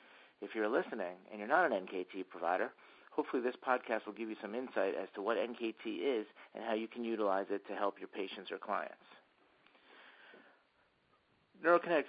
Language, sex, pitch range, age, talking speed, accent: English, male, 105-130 Hz, 50-69, 175 wpm, American